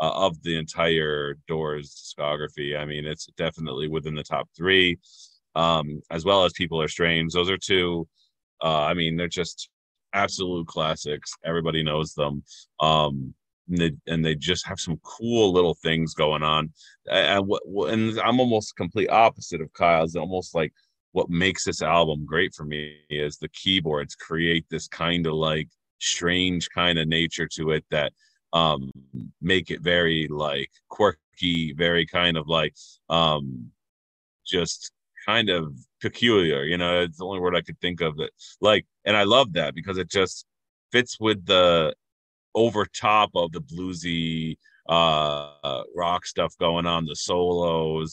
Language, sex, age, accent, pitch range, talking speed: English, male, 30-49, American, 75-90 Hz, 160 wpm